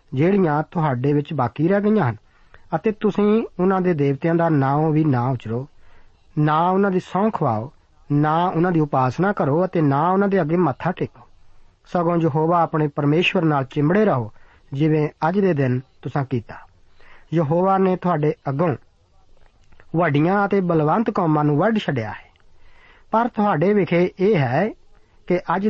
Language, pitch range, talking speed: Punjabi, 140-190 Hz, 105 wpm